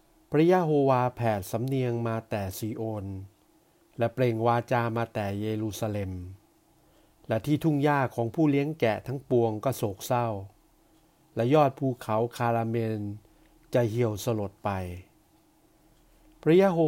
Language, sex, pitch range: Thai, male, 110-145 Hz